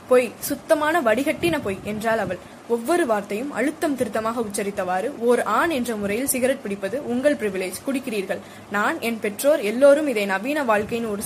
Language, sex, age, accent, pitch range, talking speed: Tamil, female, 20-39, native, 215-275 Hz, 140 wpm